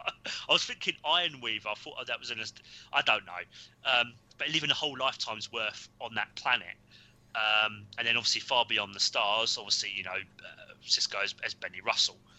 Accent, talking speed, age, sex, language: British, 195 wpm, 30-49, male, English